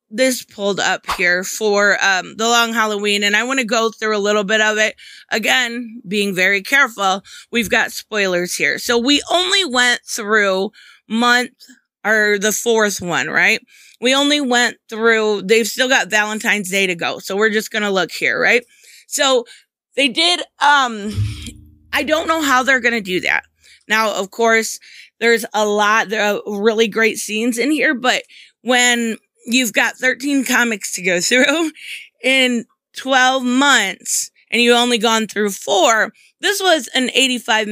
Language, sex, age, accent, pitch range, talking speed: English, female, 20-39, American, 210-270 Hz, 165 wpm